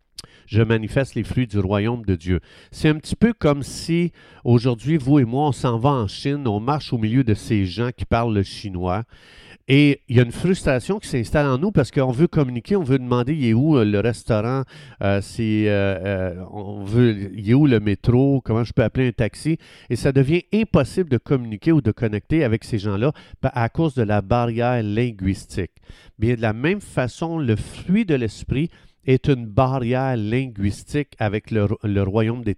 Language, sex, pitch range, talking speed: French, male, 110-145 Hz, 210 wpm